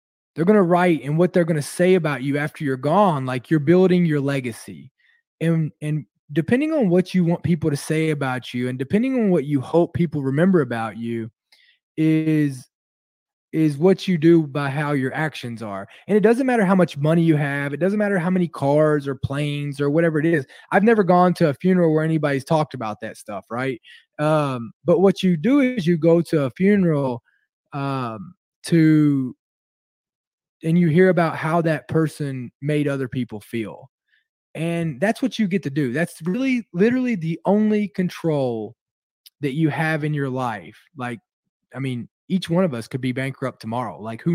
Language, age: English, 20-39